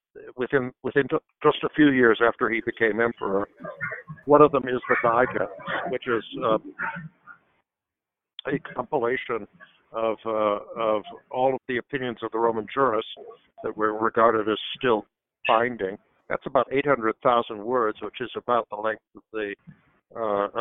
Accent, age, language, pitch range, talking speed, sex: American, 60-79, English, 105-125 Hz, 150 wpm, male